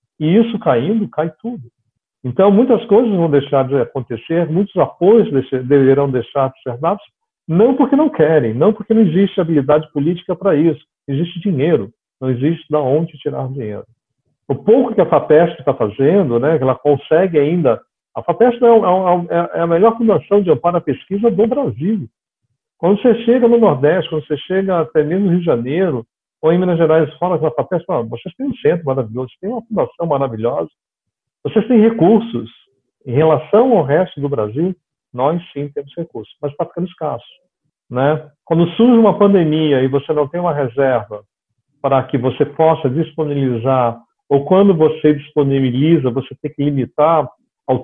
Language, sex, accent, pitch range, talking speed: Portuguese, male, Brazilian, 135-185 Hz, 170 wpm